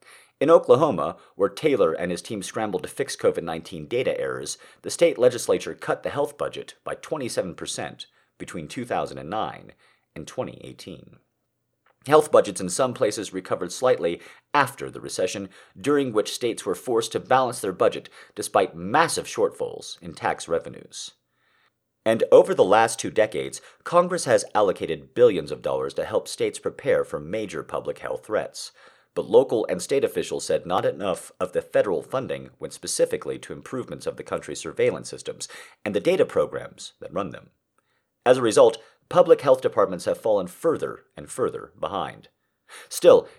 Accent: American